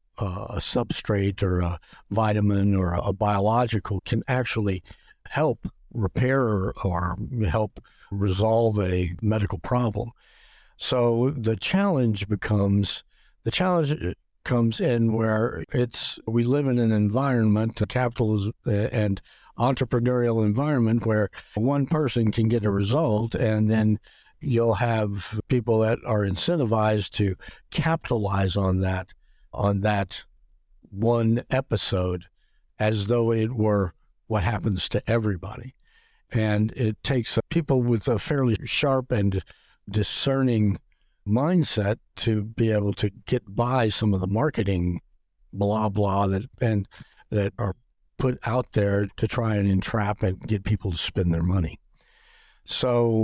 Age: 60-79